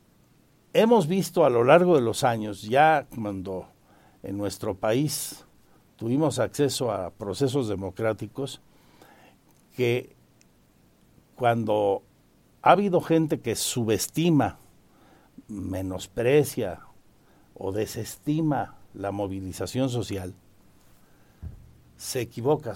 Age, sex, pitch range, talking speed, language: 60-79, male, 110-150 Hz, 85 wpm, Spanish